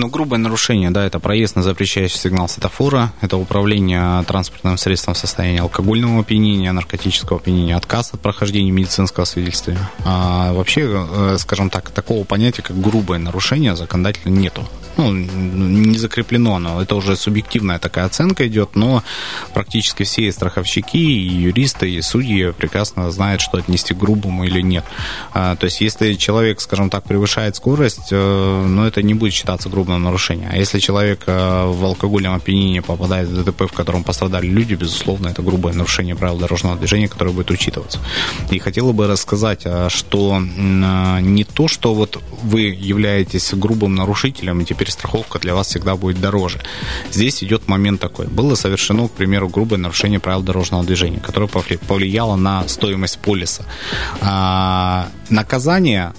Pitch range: 90-105 Hz